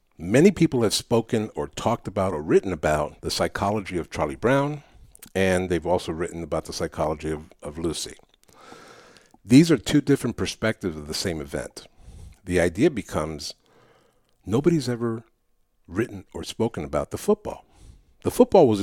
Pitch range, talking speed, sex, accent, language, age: 90-120 Hz, 155 wpm, male, American, English, 60-79